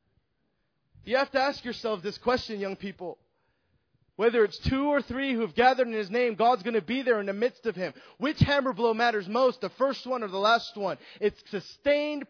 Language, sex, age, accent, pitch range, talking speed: English, male, 20-39, American, 225-285 Hz, 215 wpm